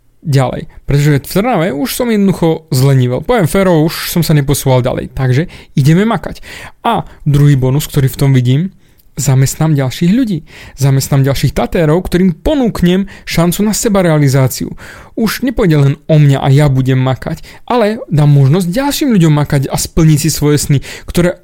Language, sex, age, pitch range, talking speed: Slovak, male, 30-49, 140-185 Hz, 160 wpm